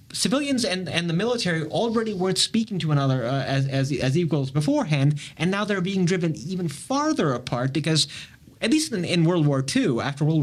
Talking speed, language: 195 wpm, English